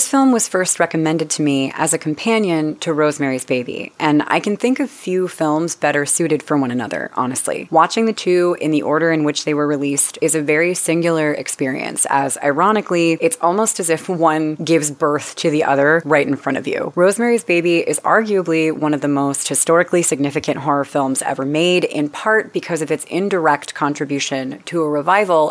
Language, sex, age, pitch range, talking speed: English, female, 30-49, 150-180 Hz, 195 wpm